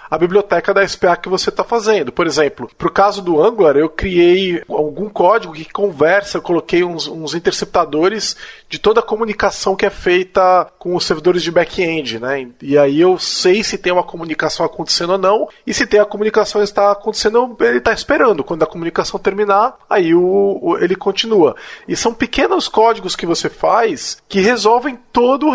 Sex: male